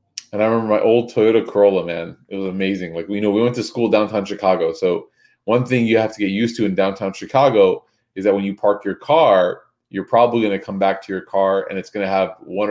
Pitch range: 95-115 Hz